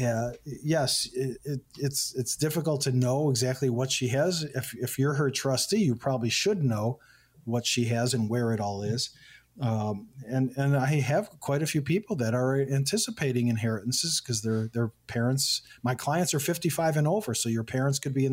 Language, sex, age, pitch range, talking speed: English, male, 40-59, 120-145 Hz, 195 wpm